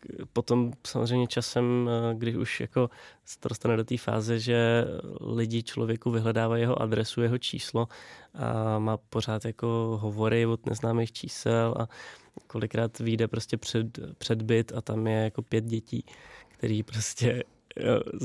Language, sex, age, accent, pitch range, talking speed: Czech, male, 20-39, native, 115-125 Hz, 140 wpm